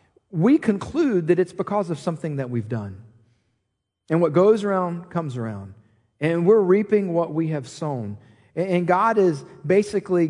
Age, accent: 40-59, American